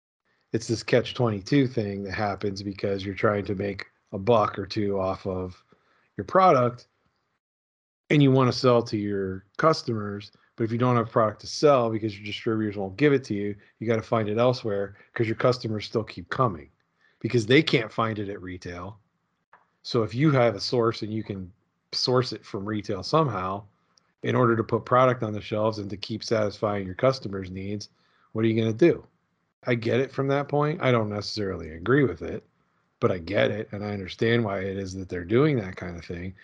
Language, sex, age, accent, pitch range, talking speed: English, male, 40-59, American, 100-120 Hz, 210 wpm